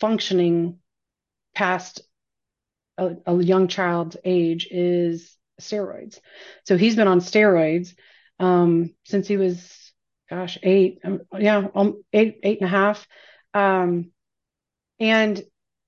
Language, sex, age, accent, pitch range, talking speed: English, female, 40-59, American, 180-210 Hz, 115 wpm